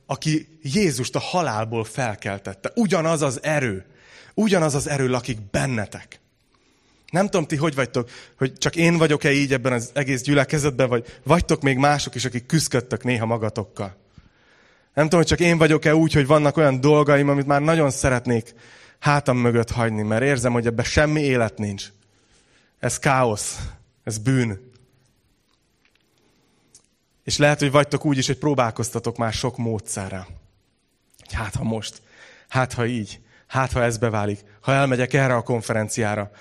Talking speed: 150 wpm